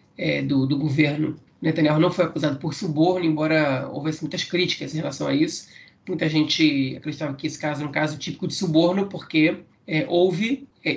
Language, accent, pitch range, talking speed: Portuguese, Brazilian, 145-170 Hz, 185 wpm